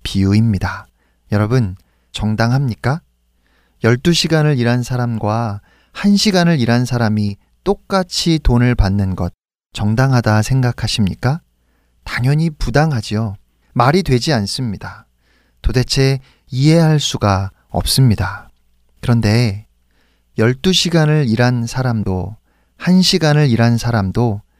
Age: 40-59